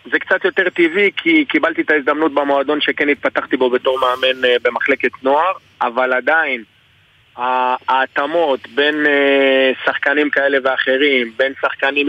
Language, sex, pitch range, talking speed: Hebrew, male, 135-160 Hz, 125 wpm